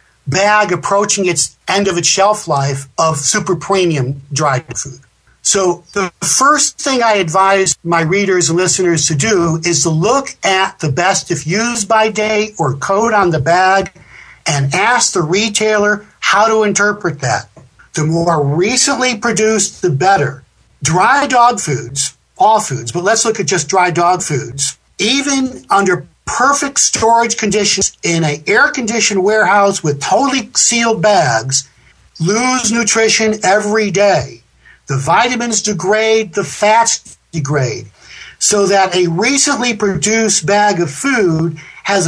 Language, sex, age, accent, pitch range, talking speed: English, male, 50-69, American, 165-220 Hz, 140 wpm